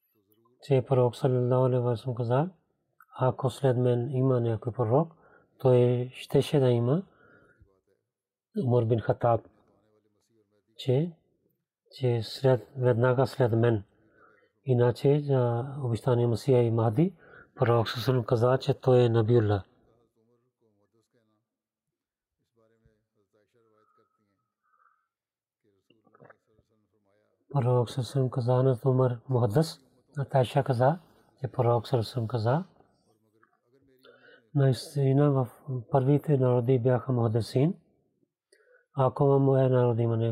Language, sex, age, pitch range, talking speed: Bulgarian, male, 30-49, 115-135 Hz, 60 wpm